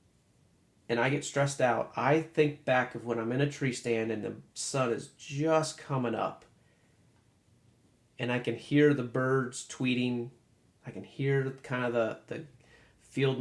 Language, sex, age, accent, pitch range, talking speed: English, male, 30-49, American, 115-135 Hz, 165 wpm